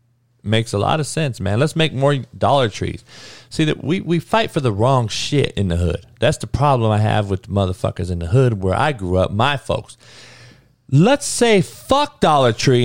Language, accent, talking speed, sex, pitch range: English, American, 210 wpm, male, 115-135 Hz